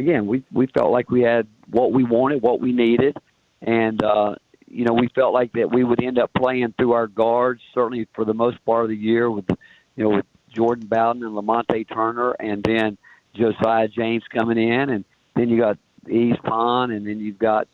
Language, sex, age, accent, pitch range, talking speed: English, male, 50-69, American, 110-125 Hz, 210 wpm